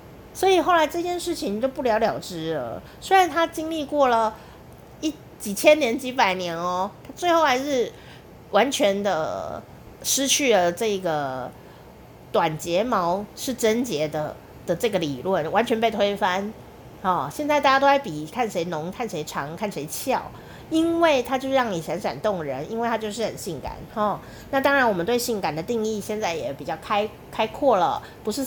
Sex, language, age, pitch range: female, Chinese, 30-49, 180-265 Hz